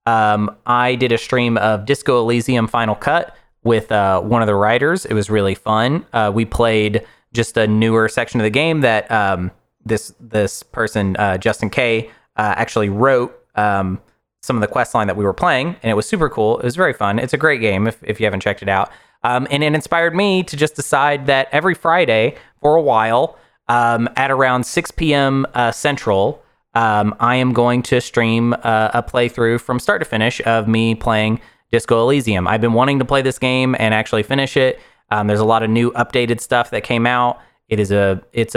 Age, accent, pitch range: 20-39, American, 110-135 Hz